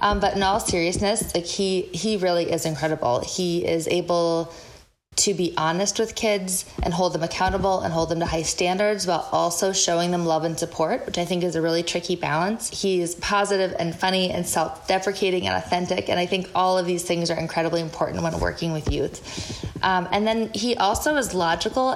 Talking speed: 205 wpm